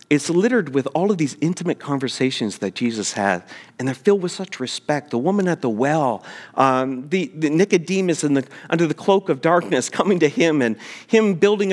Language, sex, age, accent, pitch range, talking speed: English, male, 40-59, American, 145-205 Hz, 200 wpm